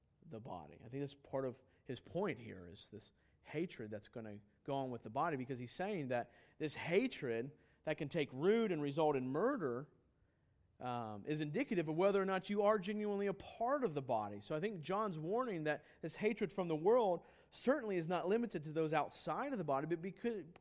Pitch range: 135-195 Hz